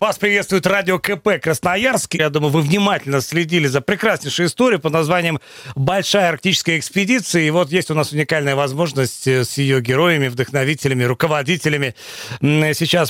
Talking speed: 140 wpm